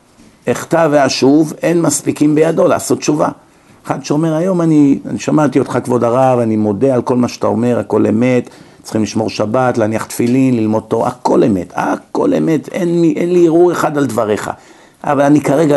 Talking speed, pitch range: 180 wpm, 130-165 Hz